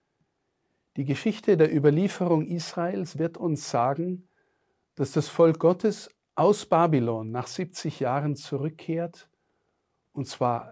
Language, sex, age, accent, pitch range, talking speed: German, male, 50-69, German, 130-170 Hz, 110 wpm